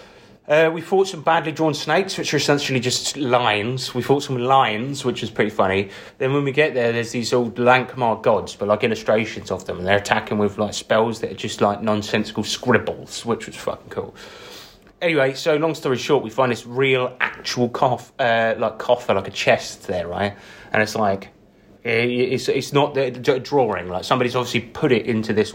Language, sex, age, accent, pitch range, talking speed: English, male, 30-49, British, 105-135 Hz, 195 wpm